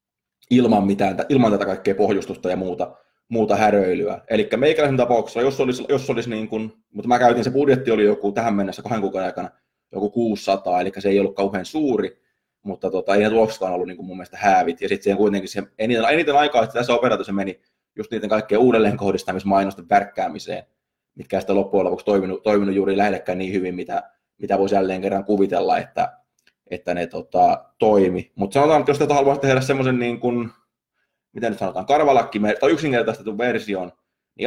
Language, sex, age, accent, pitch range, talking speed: Finnish, male, 20-39, native, 95-120 Hz, 185 wpm